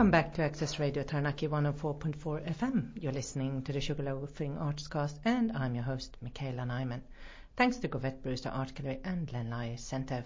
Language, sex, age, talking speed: English, female, 40-59, 175 wpm